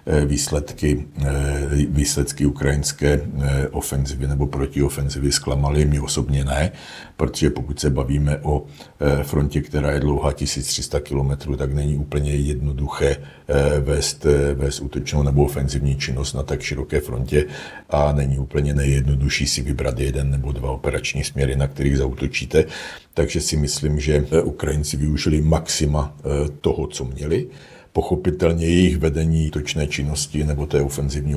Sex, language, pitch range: male, Czech, 70-75 Hz